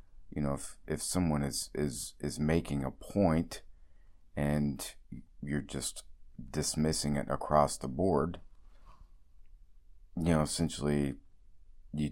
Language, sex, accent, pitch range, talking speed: English, male, American, 70-85 Hz, 115 wpm